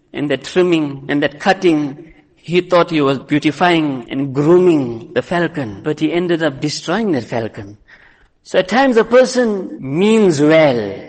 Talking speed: 155 wpm